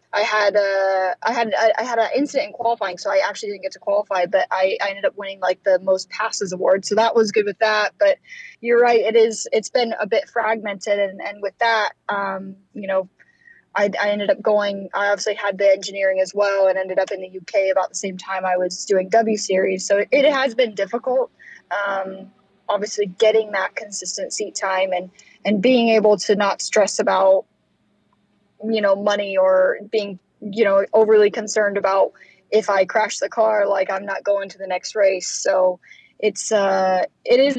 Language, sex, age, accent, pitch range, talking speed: English, female, 10-29, American, 195-225 Hz, 205 wpm